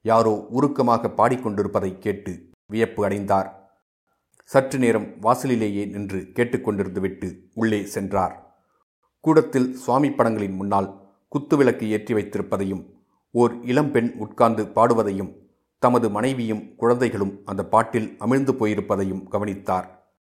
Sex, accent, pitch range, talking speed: male, native, 100-120 Hz, 95 wpm